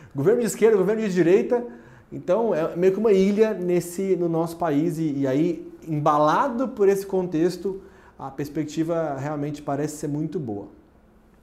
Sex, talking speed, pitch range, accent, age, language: male, 150 wpm, 150-205 Hz, Brazilian, 30-49, Portuguese